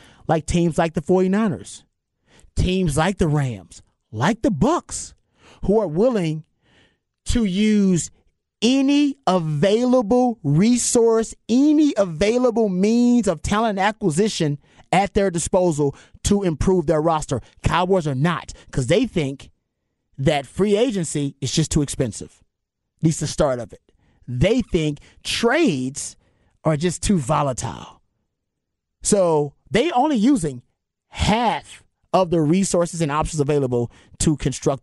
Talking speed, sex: 125 wpm, male